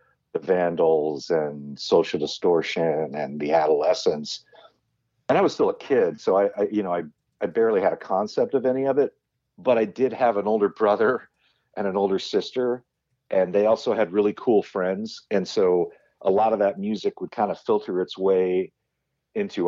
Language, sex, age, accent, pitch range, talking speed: English, male, 50-69, American, 85-130 Hz, 185 wpm